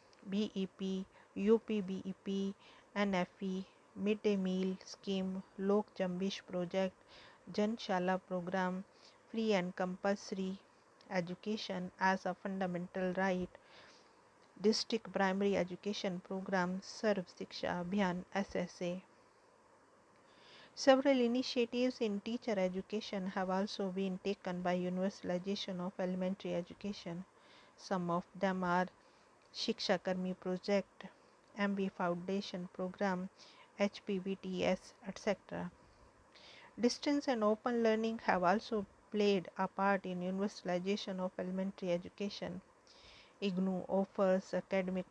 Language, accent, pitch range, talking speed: English, Indian, 185-205 Hz, 95 wpm